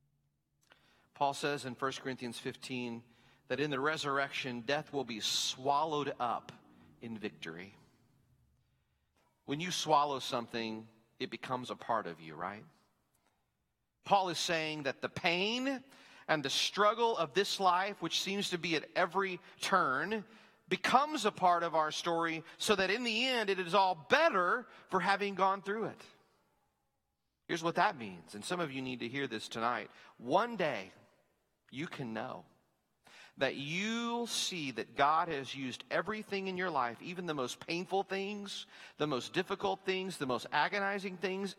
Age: 40-59